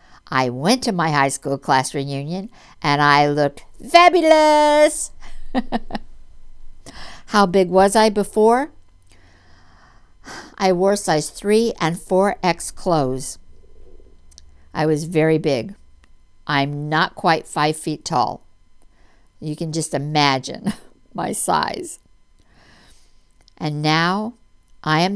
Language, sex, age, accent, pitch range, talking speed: English, female, 60-79, American, 145-200 Hz, 105 wpm